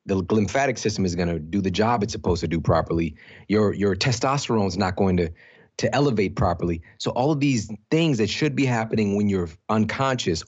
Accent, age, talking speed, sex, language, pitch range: American, 30-49, 200 wpm, male, English, 90-115 Hz